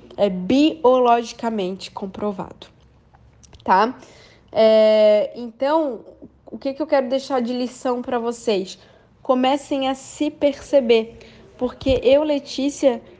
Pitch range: 220-265 Hz